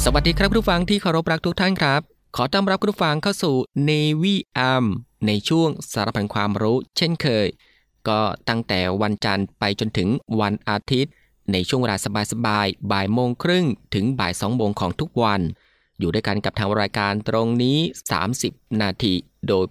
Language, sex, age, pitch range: Thai, male, 20-39, 100-135 Hz